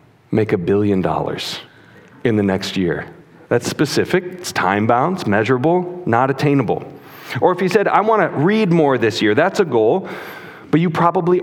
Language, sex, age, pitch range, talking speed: English, male, 40-59, 115-165 Hz, 175 wpm